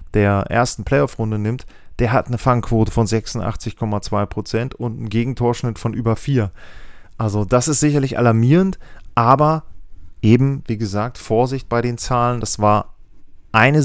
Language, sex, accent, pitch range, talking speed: German, male, German, 105-130 Hz, 140 wpm